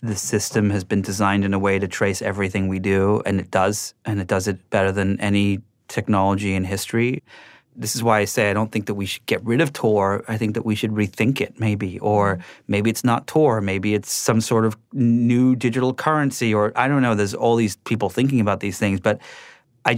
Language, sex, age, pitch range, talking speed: English, male, 30-49, 105-125 Hz, 230 wpm